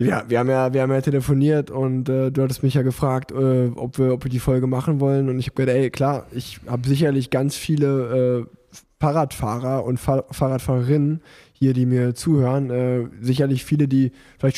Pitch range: 130-140 Hz